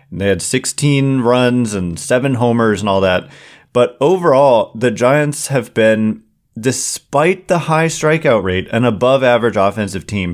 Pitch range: 105-125 Hz